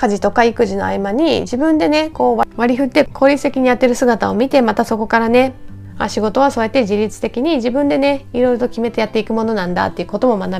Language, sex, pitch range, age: Japanese, female, 215-260 Hz, 20-39